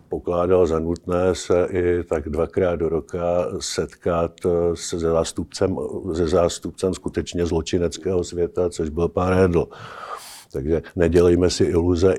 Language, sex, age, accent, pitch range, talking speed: Czech, male, 50-69, native, 90-110 Hz, 125 wpm